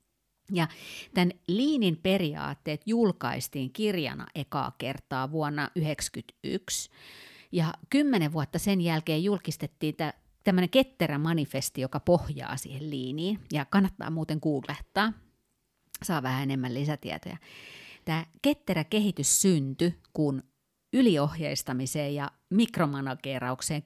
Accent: native